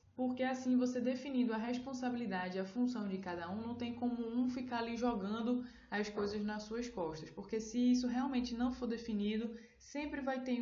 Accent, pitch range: Brazilian, 205-245 Hz